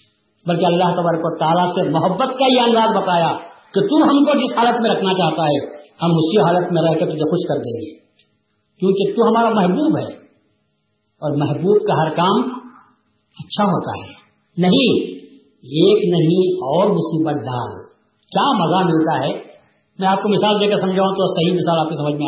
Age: 50-69